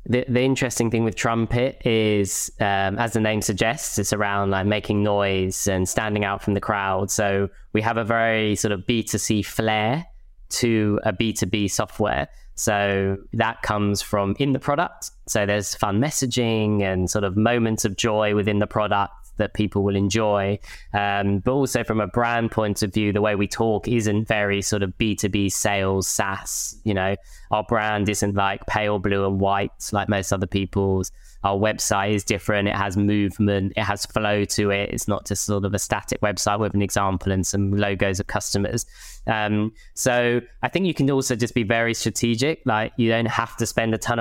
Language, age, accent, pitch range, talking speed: English, 10-29, British, 100-115 Hz, 190 wpm